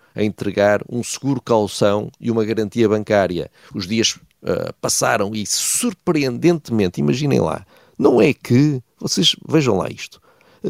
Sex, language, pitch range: male, Portuguese, 95-130 Hz